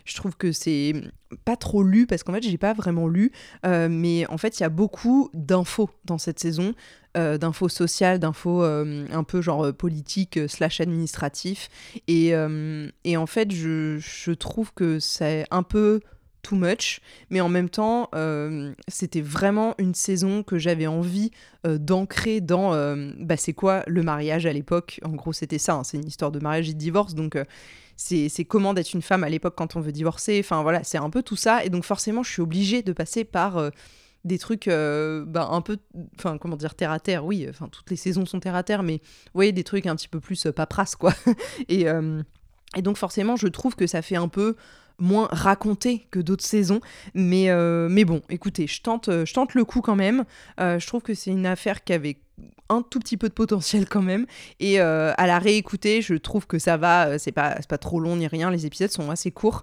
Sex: female